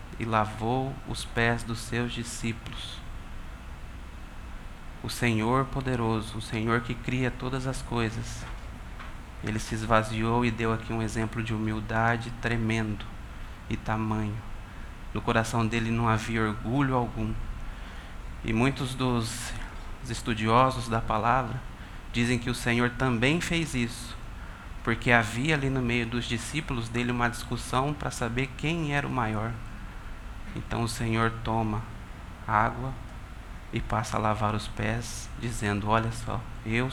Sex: male